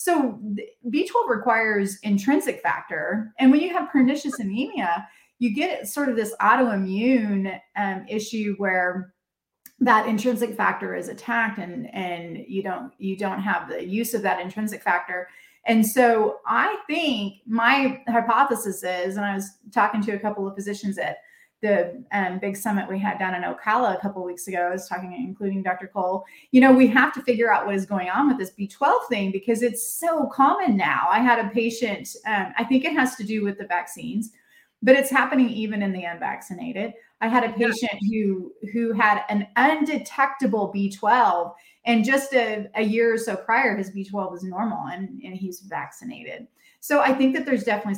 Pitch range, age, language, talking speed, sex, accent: 195-250 Hz, 30-49, English, 185 wpm, female, American